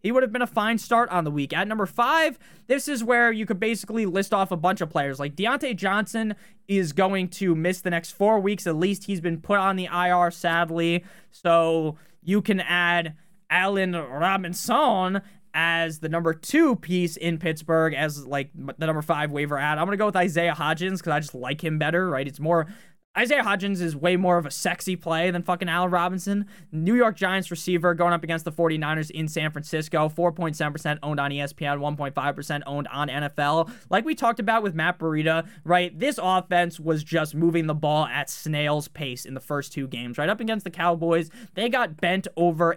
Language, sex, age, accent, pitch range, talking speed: English, male, 20-39, American, 155-200 Hz, 205 wpm